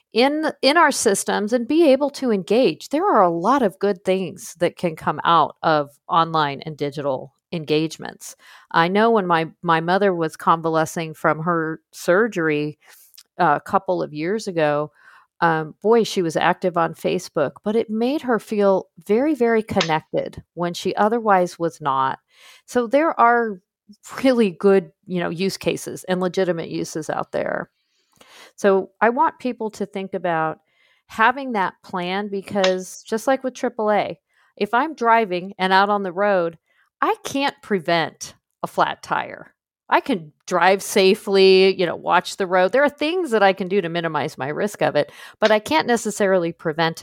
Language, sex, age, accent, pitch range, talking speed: English, female, 50-69, American, 165-220 Hz, 165 wpm